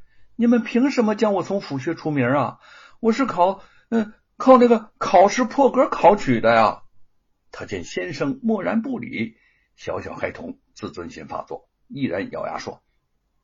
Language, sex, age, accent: Chinese, male, 60-79, native